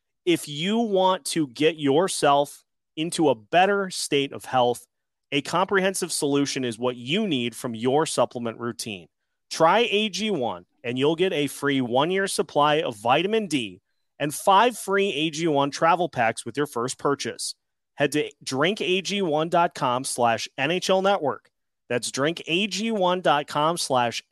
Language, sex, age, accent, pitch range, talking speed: English, male, 30-49, American, 125-170 Hz, 135 wpm